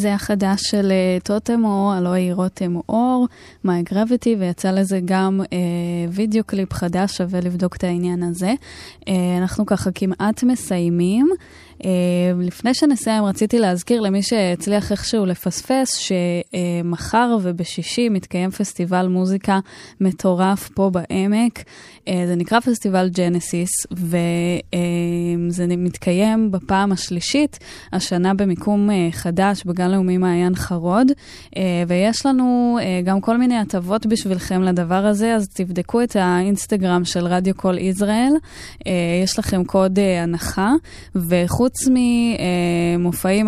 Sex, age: female, 10-29